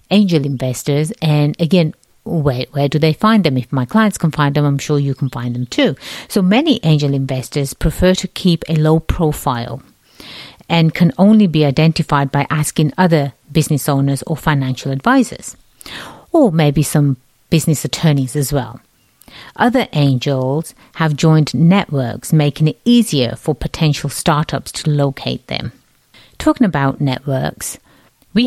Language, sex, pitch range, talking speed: English, female, 140-165 Hz, 150 wpm